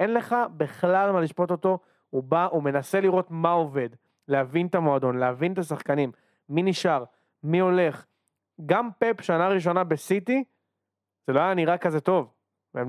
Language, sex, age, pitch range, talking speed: Hebrew, male, 30-49, 145-210 Hz, 160 wpm